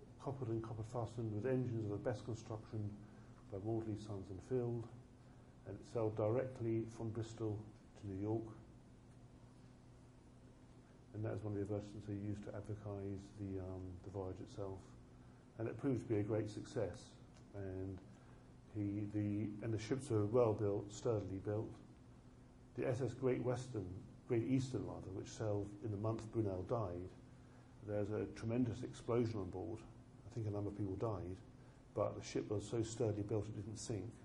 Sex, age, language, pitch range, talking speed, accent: male, 50-69, English, 100-120 Hz, 170 wpm, British